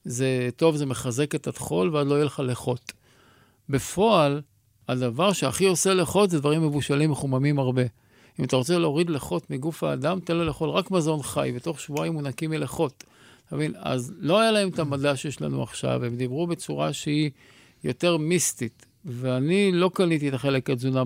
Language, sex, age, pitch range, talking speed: Hebrew, male, 50-69, 130-165 Hz, 175 wpm